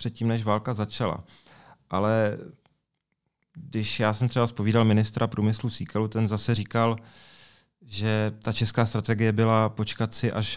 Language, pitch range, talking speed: Czech, 105-120 Hz, 135 wpm